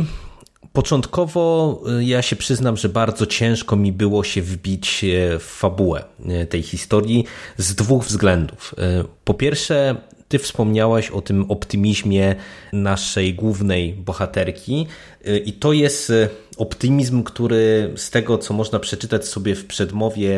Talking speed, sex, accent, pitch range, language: 120 wpm, male, native, 95-115 Hz, Polish